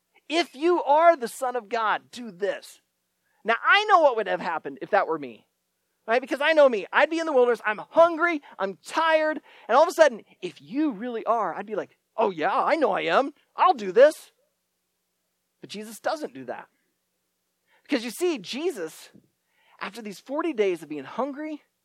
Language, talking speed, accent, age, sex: English, 195 wpm, American, 40-59, male